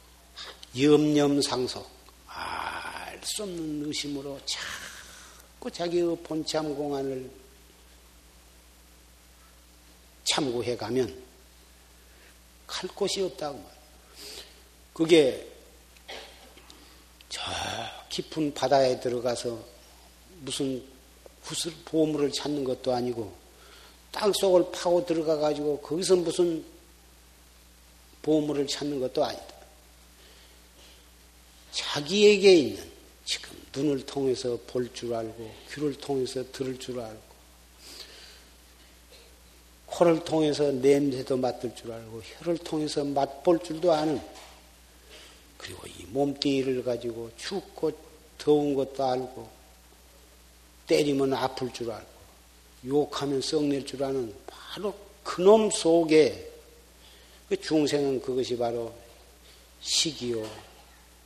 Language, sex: Korean, male